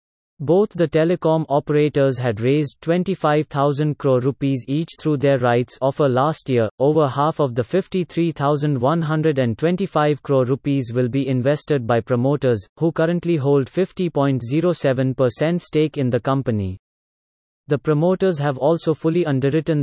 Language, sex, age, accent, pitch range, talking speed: English, male, 30-49, Indian, 130-160 Hz, 125 wpm